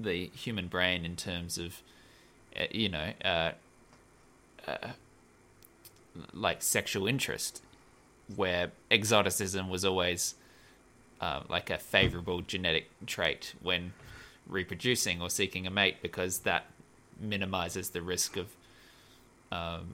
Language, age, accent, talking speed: English, 20-39, Australian, 110 wpm